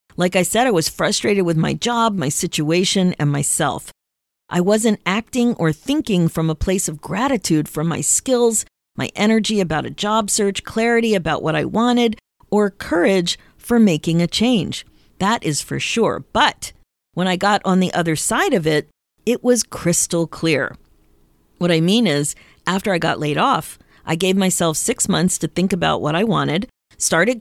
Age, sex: 40-59, female